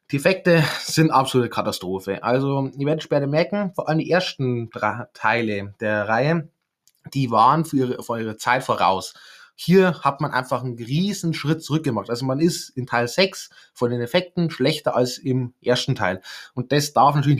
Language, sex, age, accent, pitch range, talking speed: German, male, 20-39, German, 115-145 Hz, 175 wpm